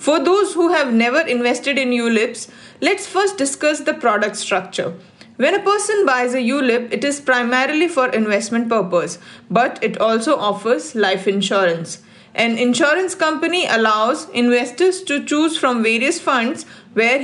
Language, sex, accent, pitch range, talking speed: English, female, Indian, 225-295 Hz, 150 wpm